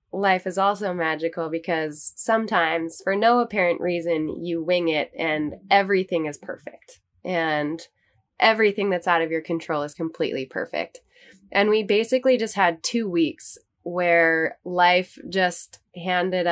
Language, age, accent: English, 20-39, American